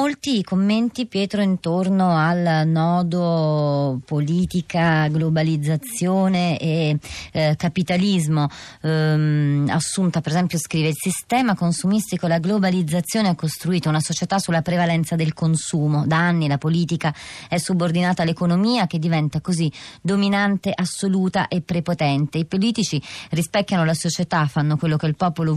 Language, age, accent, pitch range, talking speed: Italian, 30-49, native, 155-180 Hz, 125 wpm